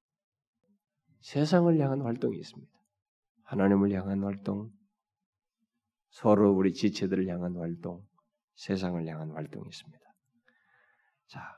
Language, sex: Korean, male